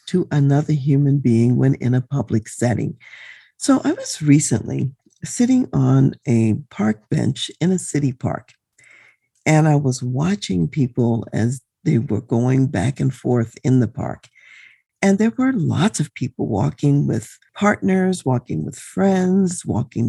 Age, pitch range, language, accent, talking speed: 50-69, 125-185 Hz, English, American, 150 wpm